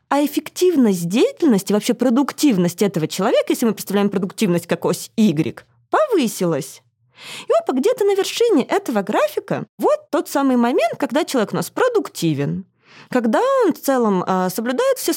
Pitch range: 185-285 Hz